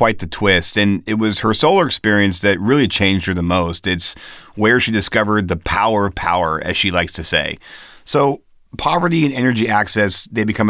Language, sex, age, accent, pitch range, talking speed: English, male, 30-49, American, 95-120 Hz, 195 wpm